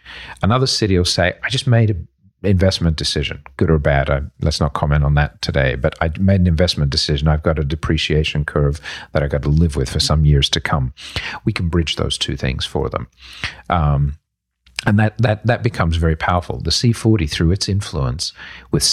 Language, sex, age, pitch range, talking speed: English, male, 50-69, 75-100 Hz, 200 wpm